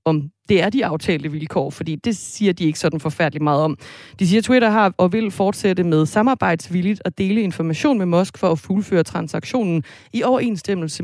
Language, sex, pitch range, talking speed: Danish, female, 160-195 Hz, 195 wpm